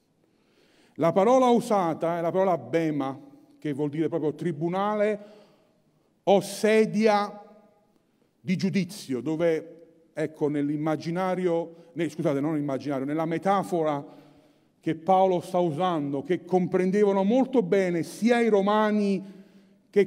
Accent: native